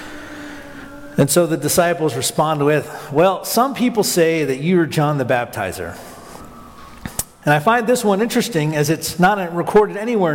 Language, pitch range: English, 140-185 Hz